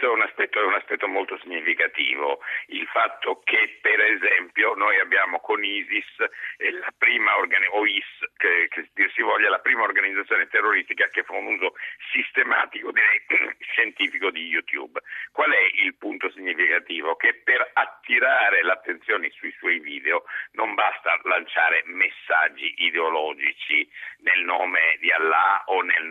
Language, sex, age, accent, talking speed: Italian, male, 50-69, native, 140 wpm